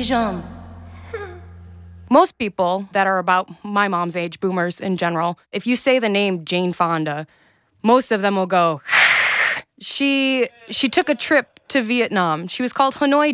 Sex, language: female, English